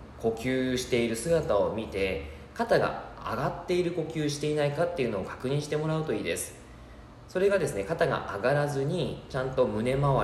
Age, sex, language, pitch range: 20-39, male, Japanese, 95-155 Hz